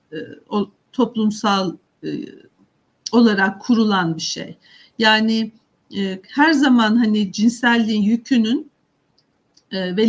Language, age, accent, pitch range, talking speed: Turkish, 50-69, native, 210-265 Hz, 95 wpm